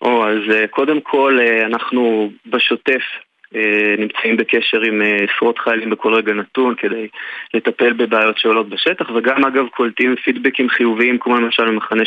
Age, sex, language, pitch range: 20-39, male, Hebrew, 110-130 Hz